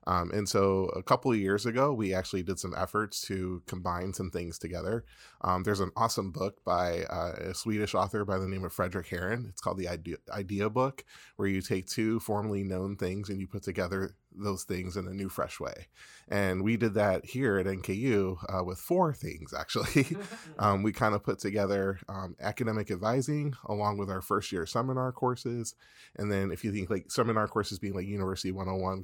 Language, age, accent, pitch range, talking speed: English, 20-39, American, 95-110 Hz, 200 wpm